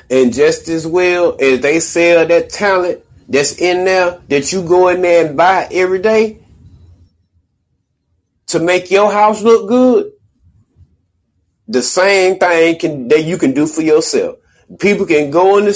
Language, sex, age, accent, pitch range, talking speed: English, male, 30-49, American, 120-185 Hz, 160 wpm